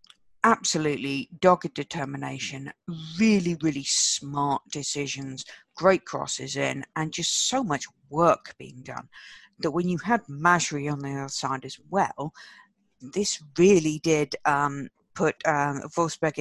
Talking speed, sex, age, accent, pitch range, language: 130 wpm, female, 50-69, British, 140-175 Hz, English